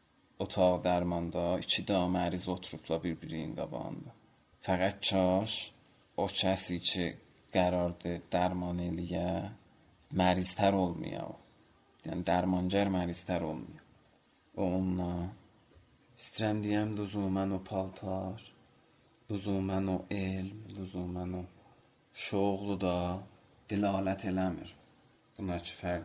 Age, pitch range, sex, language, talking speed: 30-49, 90-105 Hz, male, Persian, 100 wpm